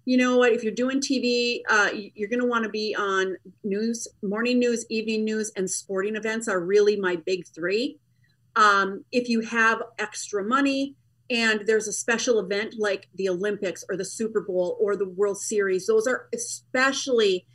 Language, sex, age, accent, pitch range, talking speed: English, female, 40-59, American, 190-240 Hz, 180 wpm